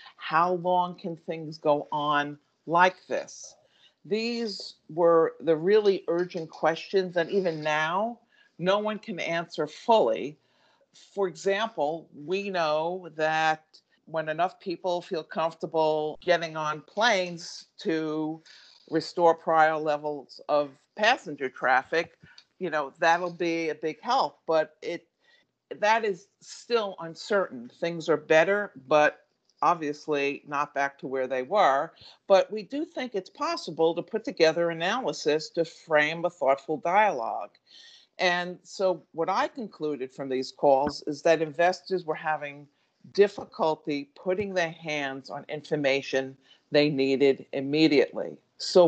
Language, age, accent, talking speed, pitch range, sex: English, 50-69, American, 130 wpm, 150-185 Hz, female